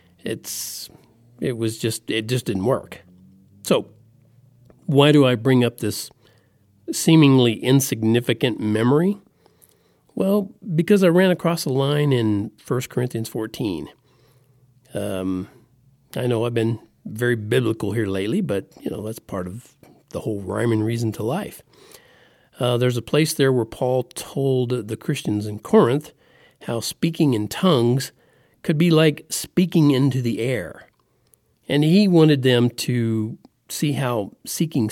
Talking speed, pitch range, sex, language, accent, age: 140 wpm, 115-155 Hz, male, English, American, 50-69